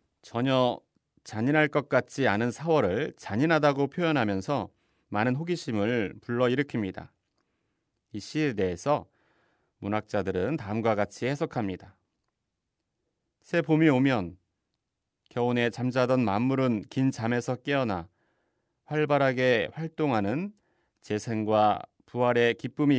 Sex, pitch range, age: male, 105-145 Hz, 40-59